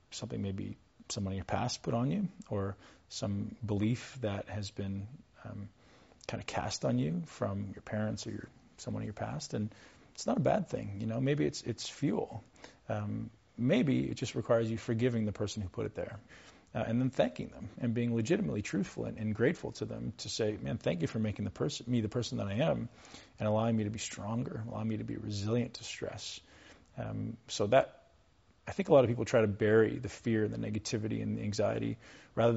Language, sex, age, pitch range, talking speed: Hindi, male, 40-59, 105-125 Hz, 215 wpm